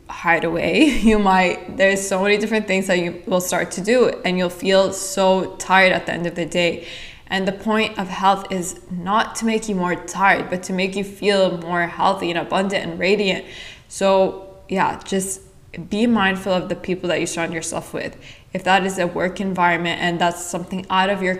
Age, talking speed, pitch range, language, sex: 20-39, 205 wpm, 180-200 Hz, English, female